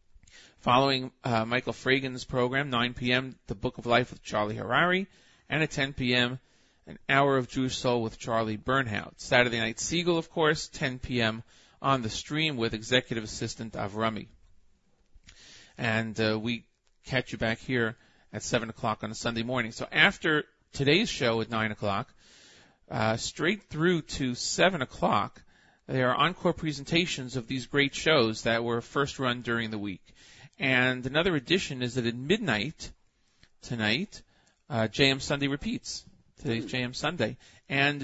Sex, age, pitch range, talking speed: male, 40-59, 115-140 Hz, 155 wpm